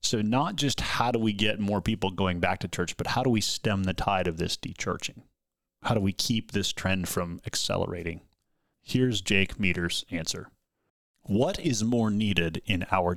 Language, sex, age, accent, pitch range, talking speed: English, male, 30-49, American, 95-115 Hz, 185 wpm